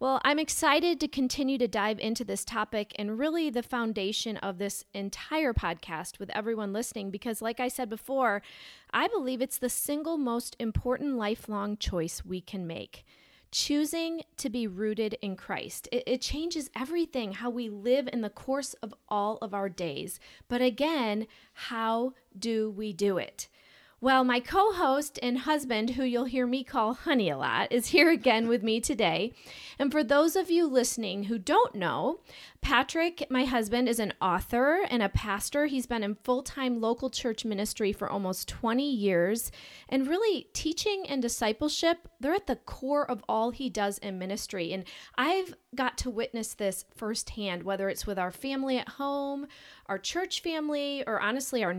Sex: female